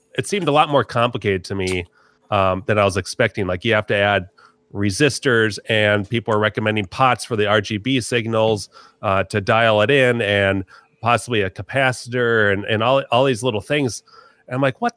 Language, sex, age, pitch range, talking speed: English, male, 30-49, 100-125 Hz, 190 wpm